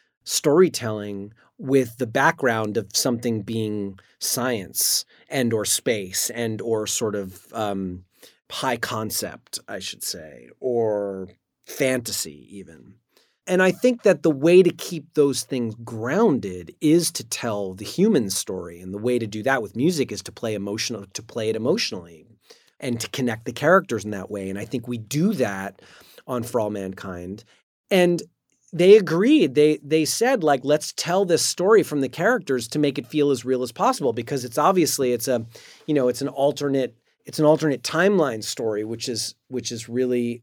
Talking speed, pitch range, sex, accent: 175 wpm, 115-150 Hz, male, American